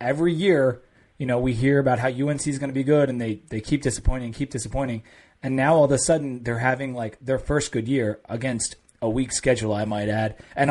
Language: English